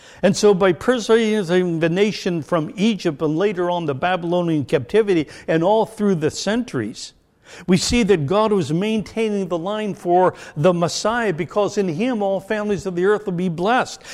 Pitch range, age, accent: 155-210 Hz, 60-79, American